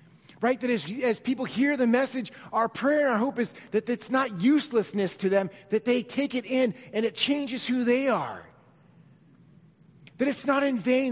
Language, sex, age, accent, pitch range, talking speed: English, male, 30-49, American, 170-240 Hz, 195 wpm